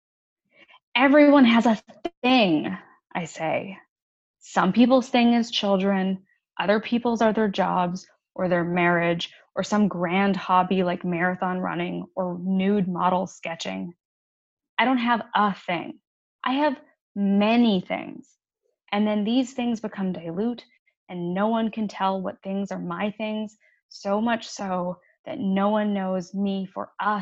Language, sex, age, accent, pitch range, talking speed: English, female, 10-29, American, 185-230 Hz, 145 wpm